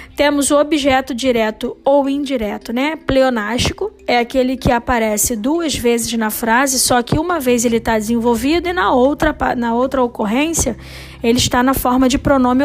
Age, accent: 20-39, Brazilian